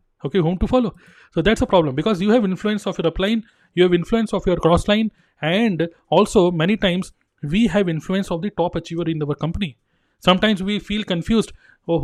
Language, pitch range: Hindi, 165-200 Hz